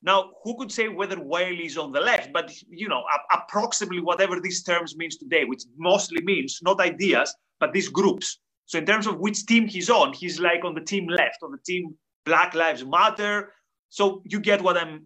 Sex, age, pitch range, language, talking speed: male, 30-49, 175-220 Hz, English, 205 wpm